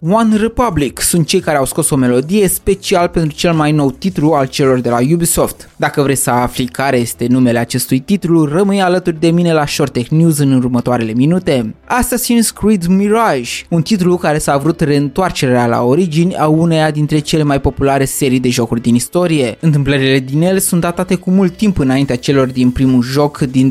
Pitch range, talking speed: 135-175 Hz, 190 wpm